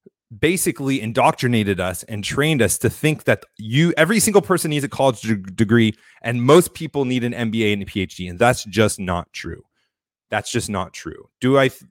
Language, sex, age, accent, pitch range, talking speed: English, male, 30-49, American, 105-150 Hz, 185 wpm